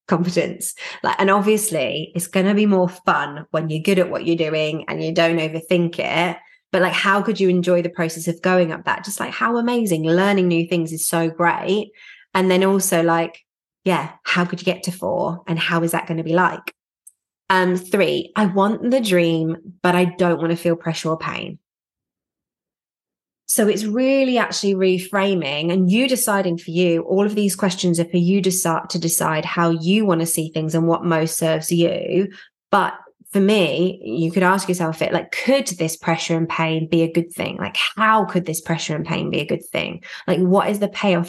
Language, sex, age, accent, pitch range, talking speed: English, female, 20-39, British, 165-195 Hz, 210 wpm